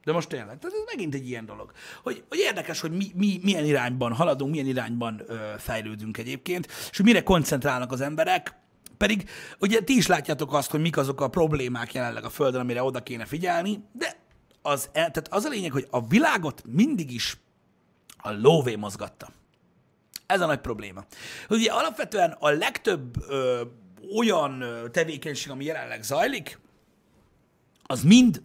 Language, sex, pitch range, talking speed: Hungarian, male, 125-195 Hz, 160 wpm